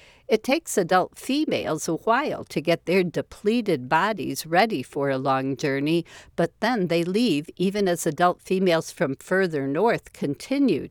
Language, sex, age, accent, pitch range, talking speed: English, female, 60-79, American, 150-210 Hz, 155 wpm